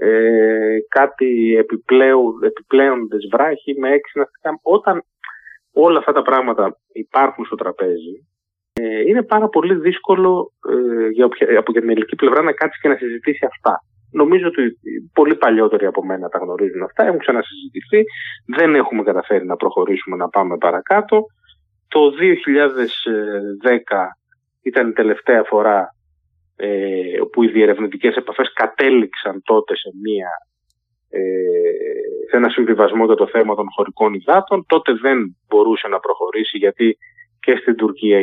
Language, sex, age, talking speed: Greek, male, 30-49, 130 wpm